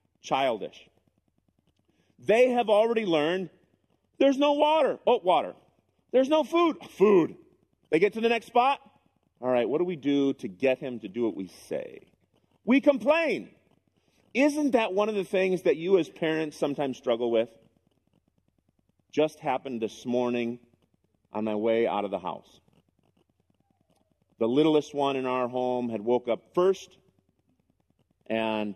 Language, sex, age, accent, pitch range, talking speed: English, male, 40-59, American, 125-180 Hz, 150 wpm